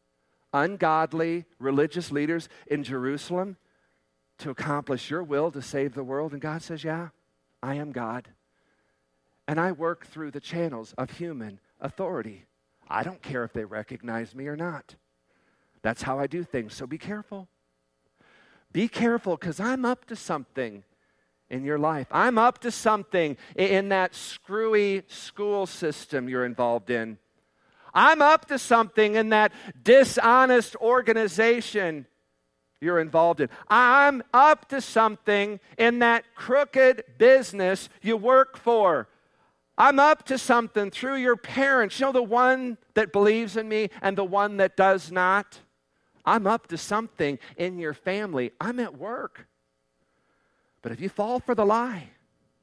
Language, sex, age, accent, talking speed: English, male, 50-69, American, 145 wpm